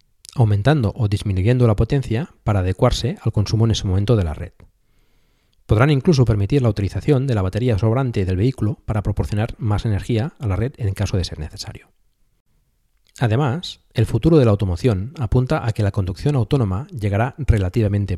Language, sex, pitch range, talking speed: Spanish, male, 95-125 Hz, 170 wpm